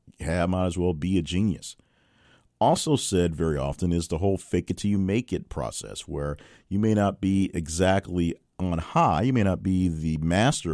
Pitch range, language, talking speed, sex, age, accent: 80-95 Hz, English, 195 wpm, male, 40-59, American